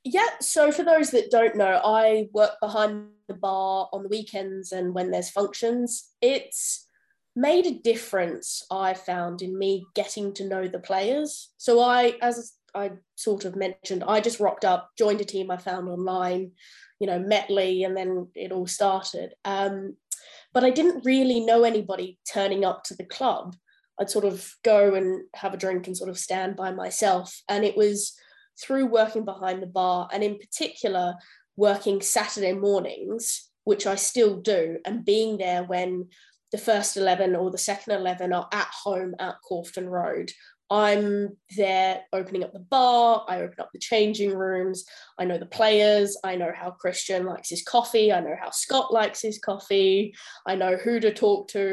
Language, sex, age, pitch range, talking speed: English, female, 10-29, 185-220 Hz, 180 wpm